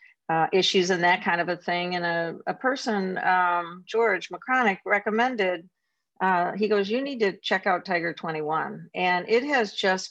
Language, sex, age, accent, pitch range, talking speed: English, female, 50-69, American, 170-210 Hz, 180 wpm